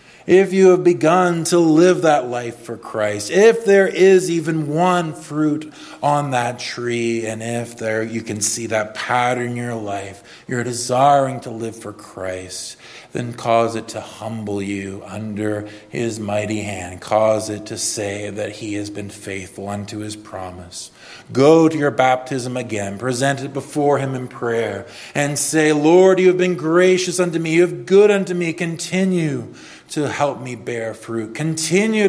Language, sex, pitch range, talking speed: English, male, 105-145 Hz, 170 wpm